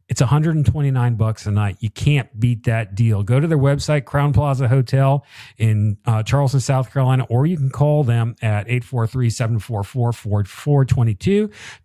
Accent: American